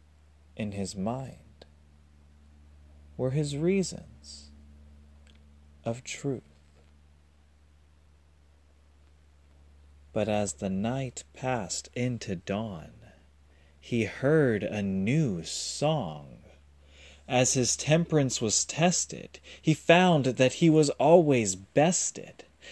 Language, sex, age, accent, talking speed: English, male, 30-49, American, 85 wpm